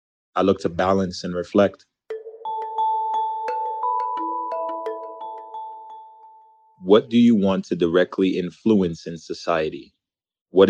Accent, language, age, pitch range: American, English, 30-49, 90-125 Hz